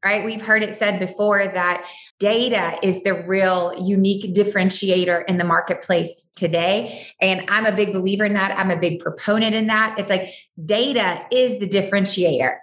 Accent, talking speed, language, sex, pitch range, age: American, 170 wpm, English, female, 185-230 Hz, 20-39